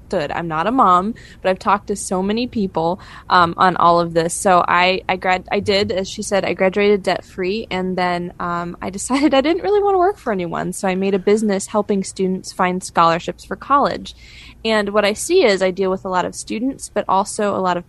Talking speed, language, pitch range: 230 wpm, English, 185-235 Hz